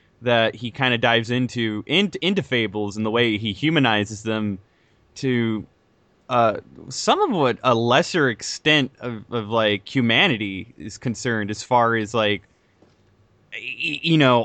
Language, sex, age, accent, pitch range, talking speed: English, male, 20-39, American, 110-130 Hz, 145 wpm